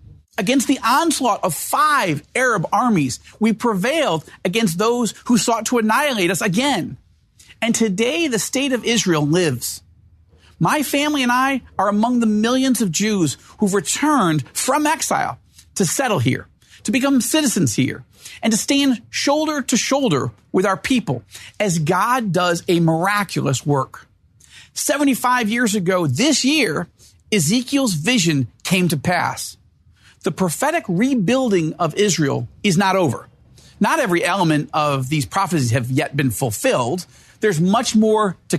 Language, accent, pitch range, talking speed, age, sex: English, American, 165-255 Hz, 145 wpm, 50-69, male